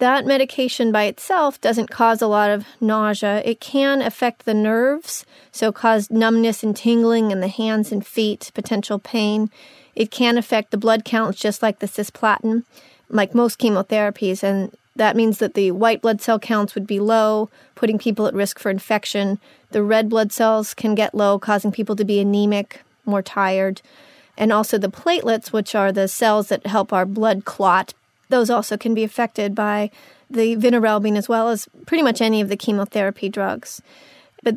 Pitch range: 210-240 Hz